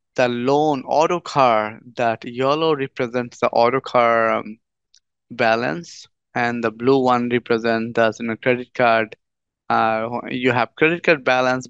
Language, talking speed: English, 145 wpm